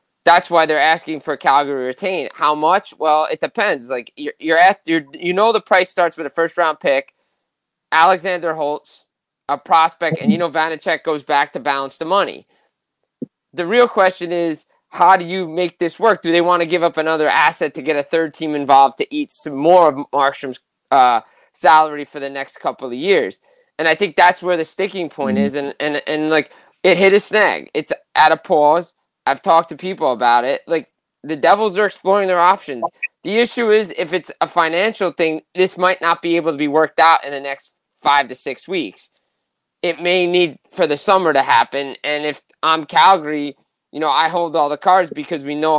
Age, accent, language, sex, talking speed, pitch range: 20-39, American, English, male, 205 wpm, 150-180 Hz